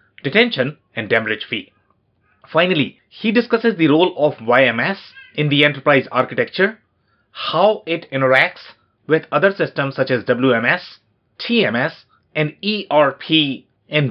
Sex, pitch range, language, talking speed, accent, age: male, 125-165 Hz, English, 120 wpm, Indian, 30-49